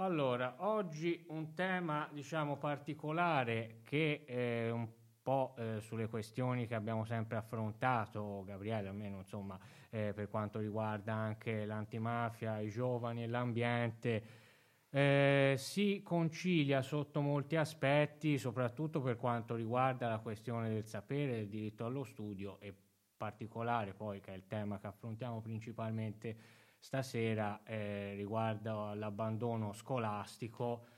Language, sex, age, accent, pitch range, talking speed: Italian, male, 20-39, native, 110-125 Hz, 120 wpm